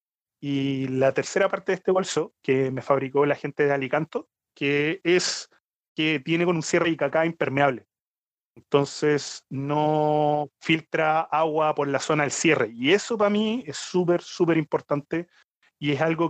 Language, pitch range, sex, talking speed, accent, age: Spanish, 140-175 Hz, male, 160 wpm, Argentinian, 30-49